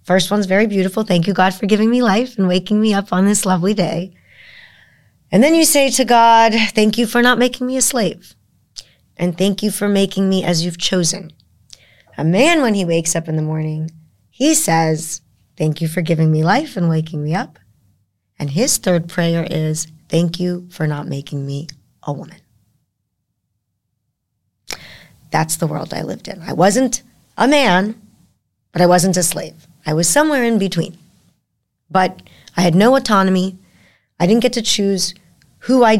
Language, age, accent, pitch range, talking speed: English, 30-49, American, 165-205 Hz, 180 wpm